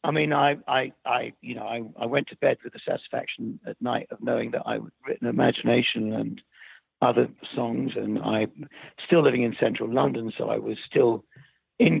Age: 60-79